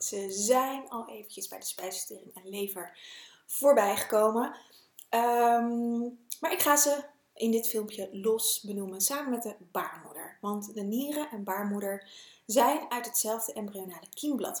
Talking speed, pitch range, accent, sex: 145 wpm, 205-275 Hz, Dutch, female